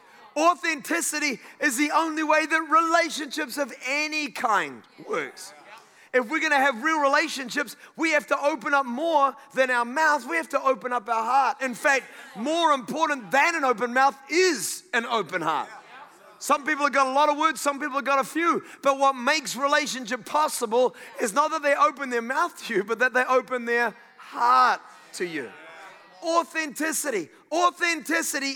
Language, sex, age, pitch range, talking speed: English, male, 30-49, 255-310 Hz, 175 wpm